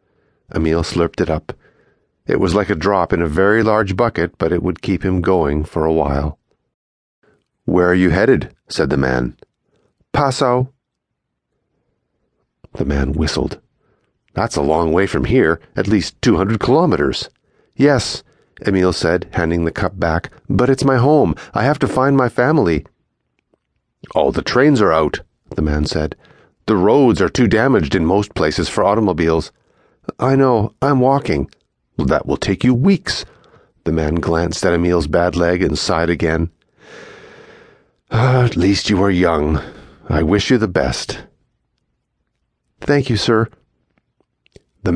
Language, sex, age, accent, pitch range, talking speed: English, male, 40-59, American, 80-110 Hz, 155 wpm